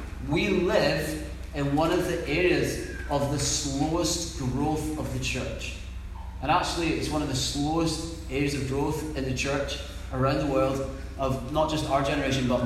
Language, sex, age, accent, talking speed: English, male, 30-49, British, 170 wpm